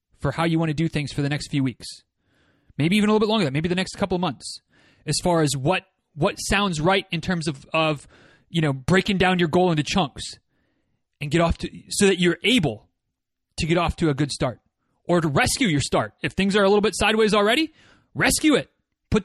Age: 30-49